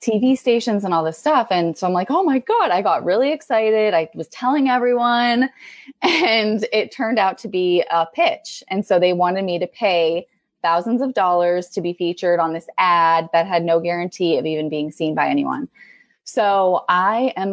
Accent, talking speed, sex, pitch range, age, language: American, 200 wpm, female, 165-215 Hz, 20-39, English